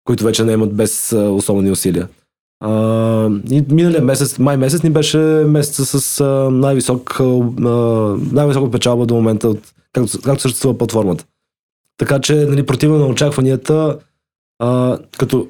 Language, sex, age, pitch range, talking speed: Bulgarian, male, 20-39, 120-155 Hz, 130 wpm